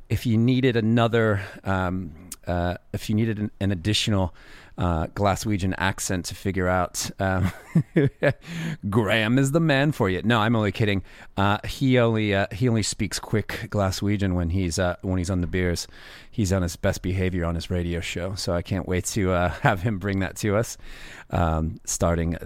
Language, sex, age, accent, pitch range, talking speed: English, male, 30-49, American, 90-115 Hz, 185 wpm